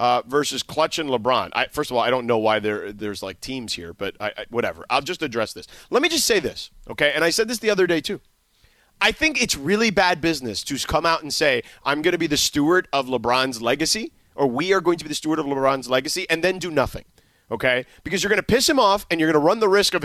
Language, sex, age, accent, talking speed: English, male, 30-49, American, 260 wpm